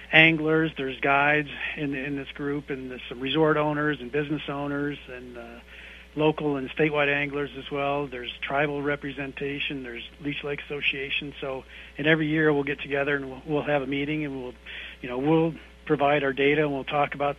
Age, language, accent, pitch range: 50-69, English, American, 130-145 Hz